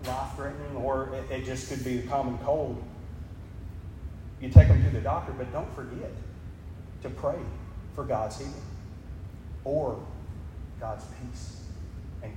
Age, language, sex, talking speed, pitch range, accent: 40-59, English, male, 130 wpm, 85-130 Hz, American